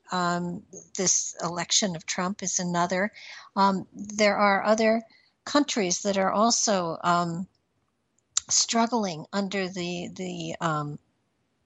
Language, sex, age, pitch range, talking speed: English, female, 60-79, 180-215 Hz, 110 wpm